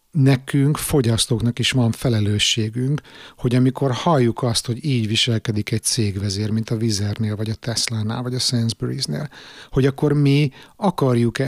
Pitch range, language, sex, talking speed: 110-130 Hz, Hungarian, male, 140 wpm